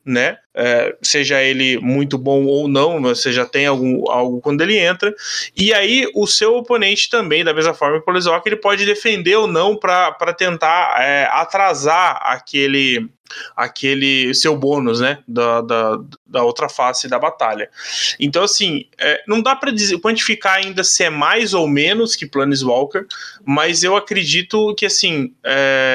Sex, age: male, 20-39